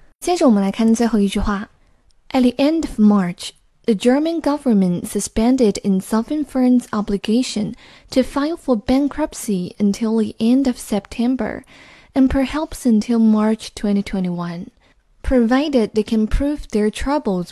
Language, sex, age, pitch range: Chinese, female, 10-29, 205-270 Hz